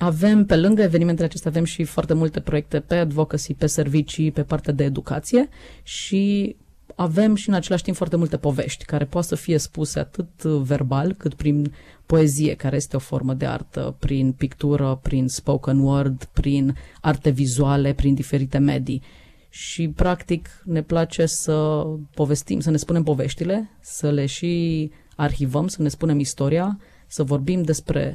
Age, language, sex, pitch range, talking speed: 30-49, Romanian, female, 145-165 Hz, 160 wpm